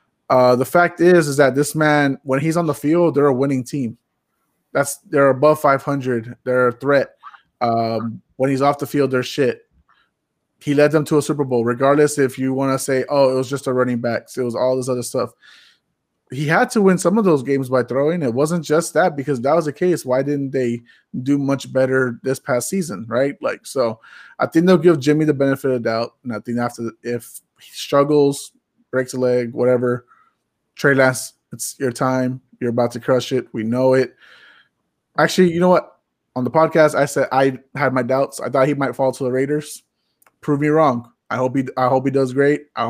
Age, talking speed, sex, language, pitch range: 20-39, 220 wpm, male, English, 125-150 Hz